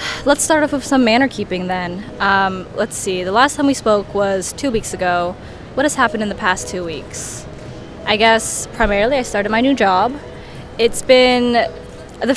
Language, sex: English, female